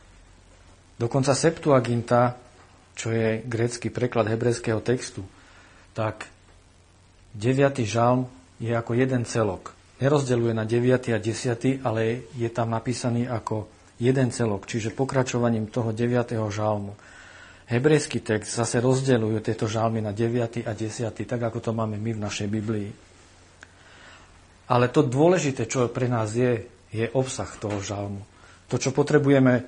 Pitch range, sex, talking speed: 105-125 Hz, male, 130 wpm